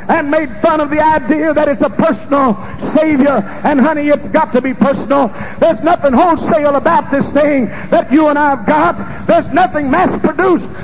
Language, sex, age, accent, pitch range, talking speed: English, male, 50-69, American, 245-310 Hz, 185 wpm